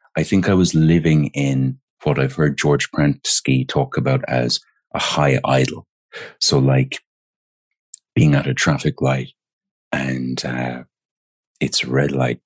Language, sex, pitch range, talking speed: English, male, 65-90 Hz, 145 wpm